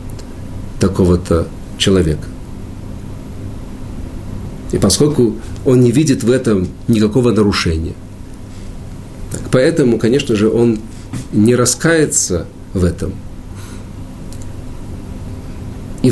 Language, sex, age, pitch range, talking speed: Russian, male, 50-69, 90-110 Hz, 75 wpm